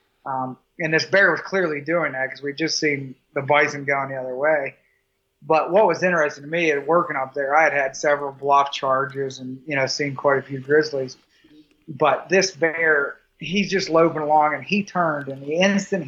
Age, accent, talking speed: 30-49, American, 205 wpm